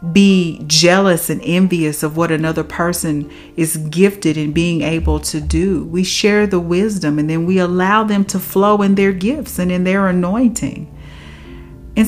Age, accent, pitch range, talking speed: 40-59, American, 160-200 Hz, 170 wpm